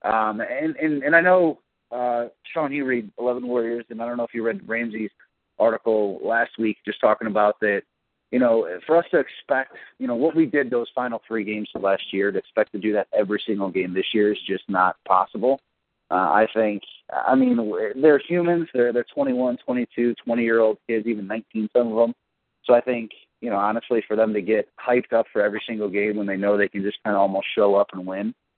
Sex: male